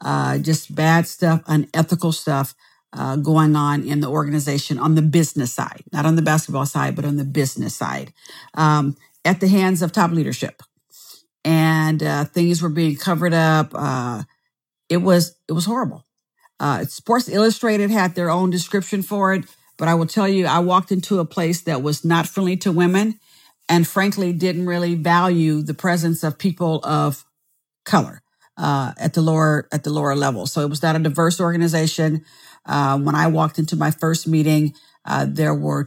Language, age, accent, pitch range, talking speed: English, 50-69, American, 150-175 Hz, 175 wpm